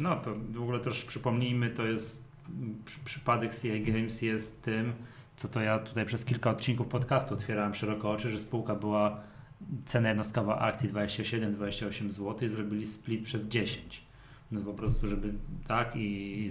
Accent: native